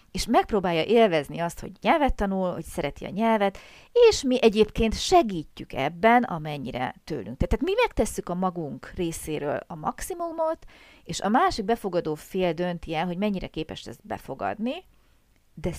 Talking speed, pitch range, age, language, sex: 150 wpm, 160-205 Hz, 40-59, Hungarian, female